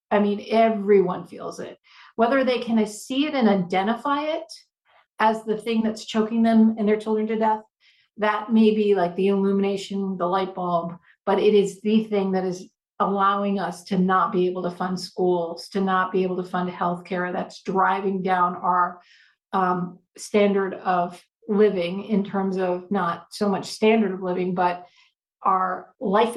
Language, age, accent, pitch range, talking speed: English, 50-69, American, 185-220 Hz, 175 wpm